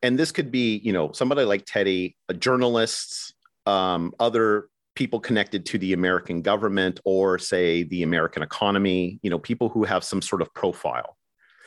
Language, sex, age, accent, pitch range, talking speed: English, male, 40-59, American, 95-125 Hz, 165 wpm